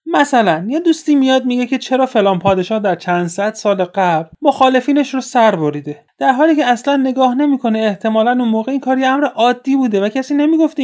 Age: 30-49